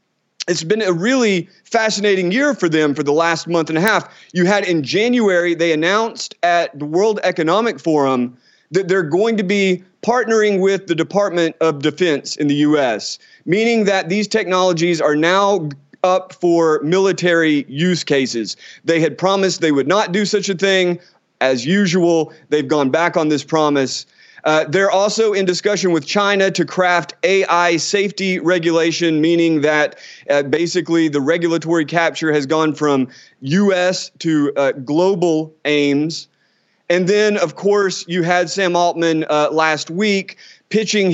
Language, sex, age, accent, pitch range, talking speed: English, male, 30-49, American, 155-195 Hz, 160 wpm